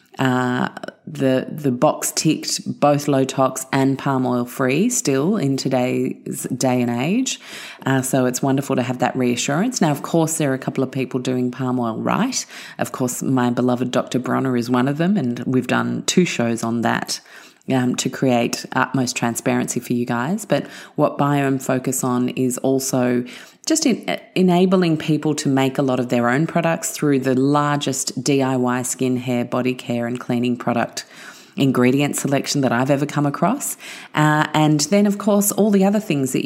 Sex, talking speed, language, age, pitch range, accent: female, 185 wpm, English, 30-49, 125-160 Hz, Australian